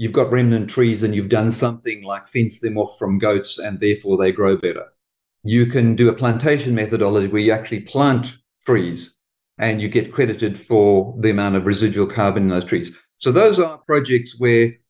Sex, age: male, 50-69